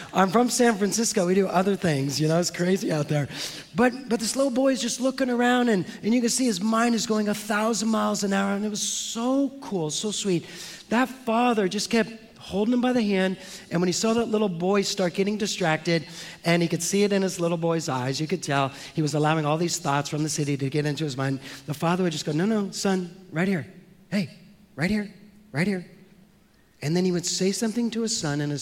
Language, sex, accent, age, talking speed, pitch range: English, male, American, 30-49, 240 wpm, 150-205 Hz